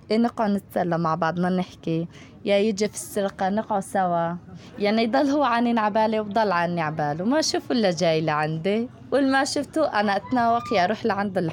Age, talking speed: 20-39, 165 wpm